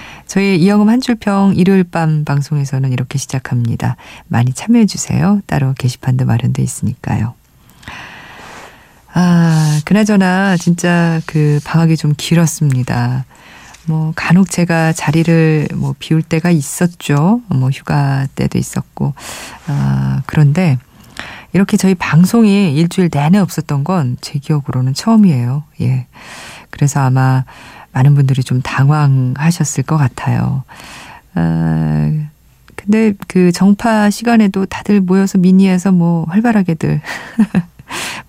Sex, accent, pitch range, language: female, native, 135-180 Hz, Korean